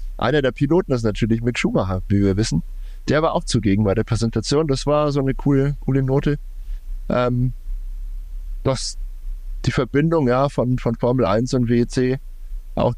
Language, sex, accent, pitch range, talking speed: German, male, German, 100-130 Hz, 165 wpm